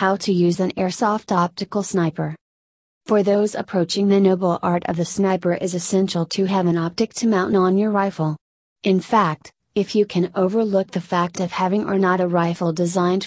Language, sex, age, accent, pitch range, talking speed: English, female, 30-49, American, 175-200 Hz, 190 wpm